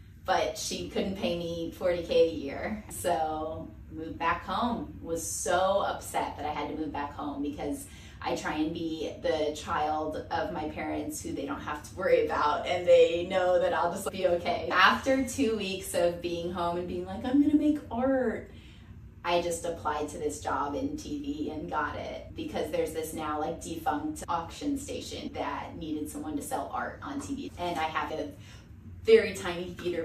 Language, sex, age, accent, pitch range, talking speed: English, female, 20-39, American, 155-235 Hz, 185 wpm